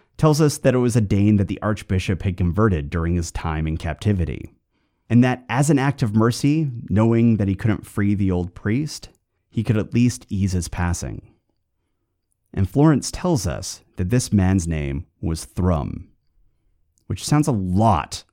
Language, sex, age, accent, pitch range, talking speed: English, male, 30-49, American, 90-120 Hz, 175 wpm